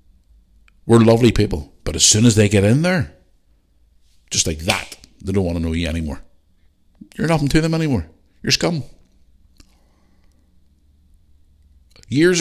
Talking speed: 140 wpm